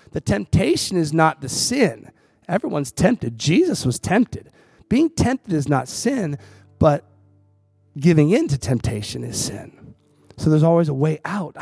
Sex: male